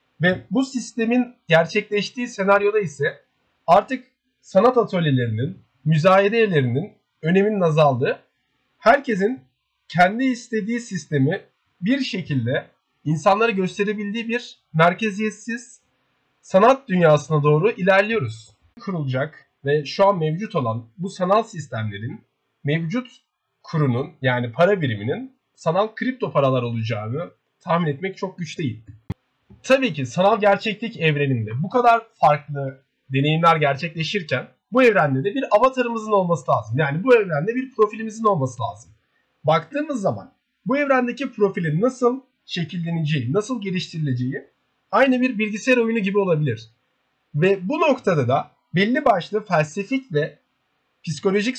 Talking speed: 115 wpm